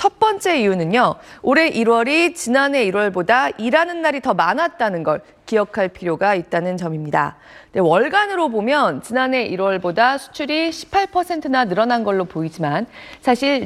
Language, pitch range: Korean, 200-295 Hz